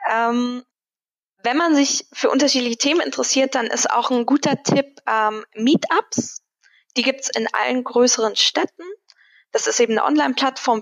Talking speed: 155 wpm